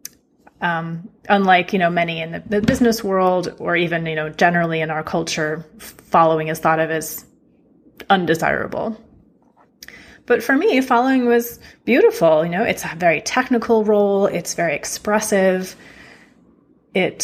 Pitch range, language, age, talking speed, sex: 170-220 Hz, English, 30-49, 140 wpm, female